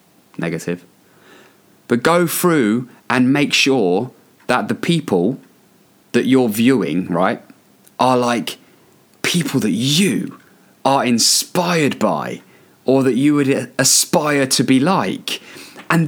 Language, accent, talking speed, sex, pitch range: English, British, 115 wpm, male, 130-165 Hz